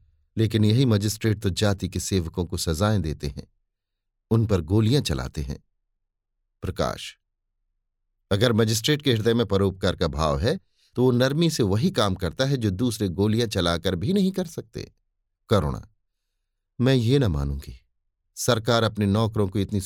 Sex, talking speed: male, 155 wpm